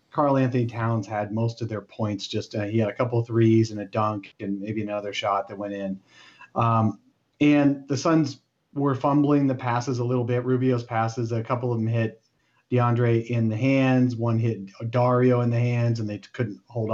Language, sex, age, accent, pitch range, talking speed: English, male, 40-59, American, 110-130 Hz, 210 wpm